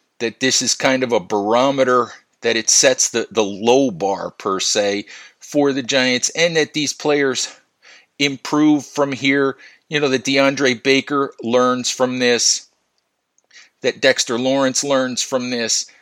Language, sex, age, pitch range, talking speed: English, male, 50-69, 120-145 Hz, 150 wpm